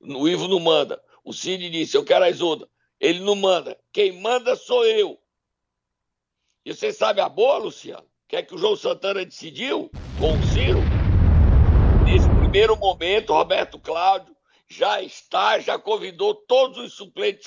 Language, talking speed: Portuguese, 160 wpm